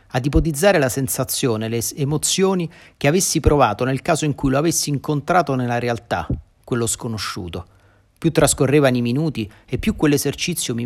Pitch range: 105-140 Hz